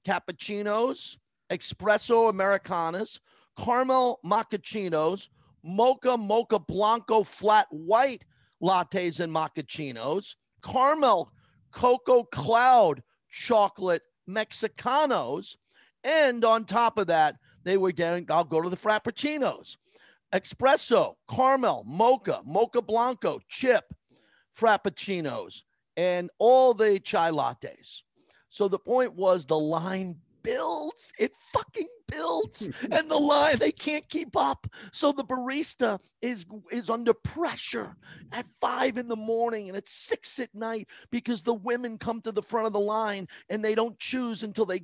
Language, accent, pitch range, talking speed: English, American, 180-245 Hz, 125 wpm